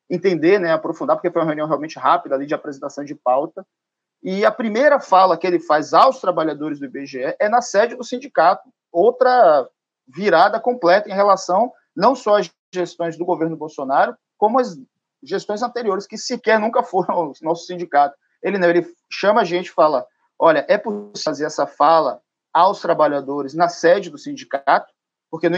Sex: male